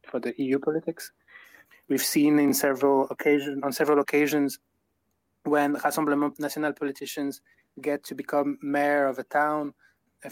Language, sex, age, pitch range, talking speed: English, male, 20-39, 125-145 Hz, 135 wpm